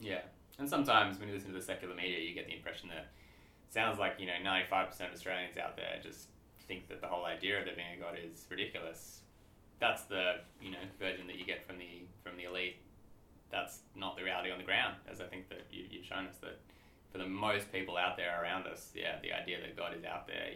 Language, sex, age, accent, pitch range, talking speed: English, male, 20-39, Australian, 90-100 Hz, 235 wpm